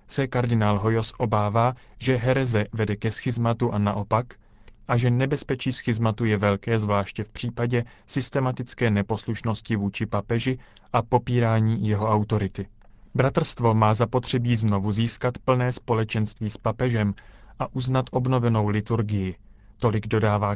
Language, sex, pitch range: Czech, male, 105-125 Hz